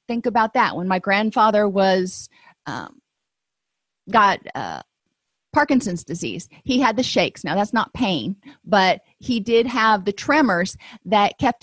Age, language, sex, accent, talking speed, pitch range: 40-59, English, female, American, 145 wpm, 180-220 Hz